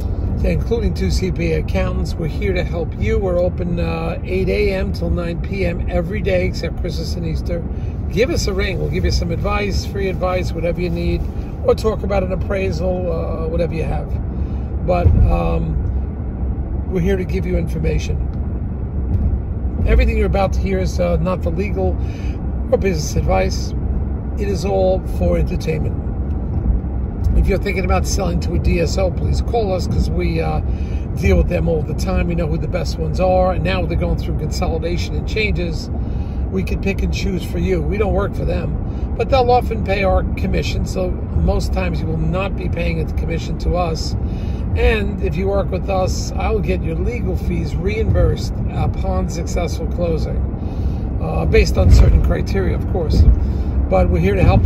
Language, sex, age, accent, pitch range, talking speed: English, male, 50-69, American, 75-90 Hz, 180 wpm